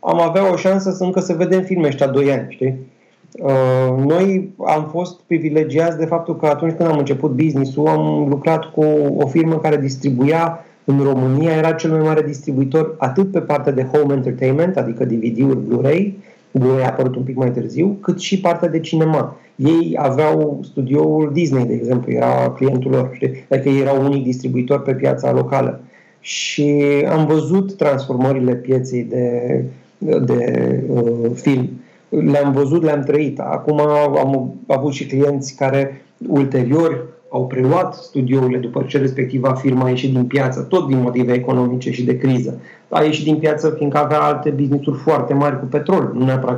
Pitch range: 130-155 Hz